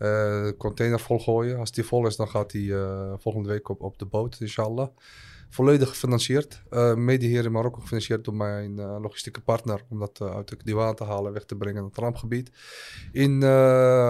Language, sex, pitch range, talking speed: Dutch, male, 105-120 Hz, 200 wpm